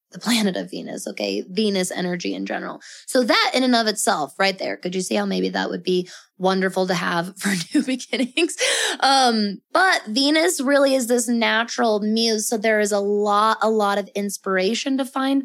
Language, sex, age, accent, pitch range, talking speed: English, female, 20-39, American, 190-240 Hz, 195 wpm